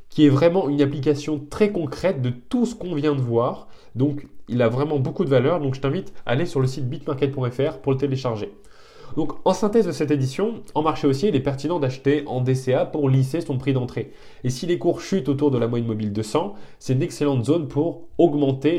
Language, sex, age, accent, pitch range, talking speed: French, male, 20-39, French, 125-150 Hz, 225 wpm